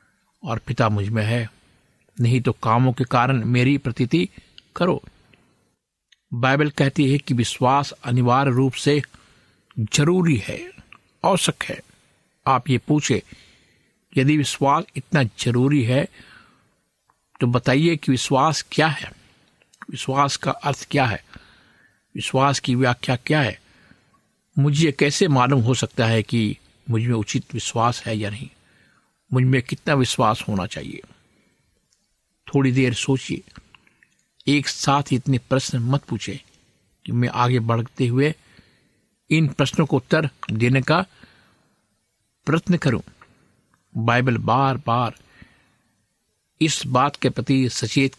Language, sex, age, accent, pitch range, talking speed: Hindi, male, 50-69, native, 120-140 Hz, 125 wpm